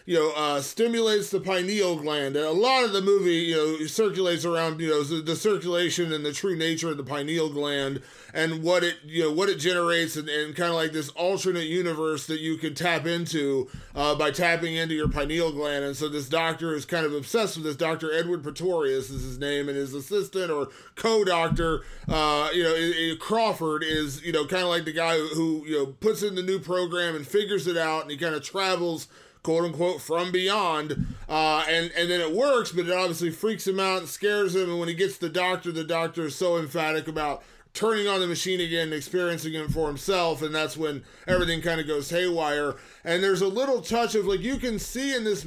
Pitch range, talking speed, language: 155-190 Hz, 225 wpm, English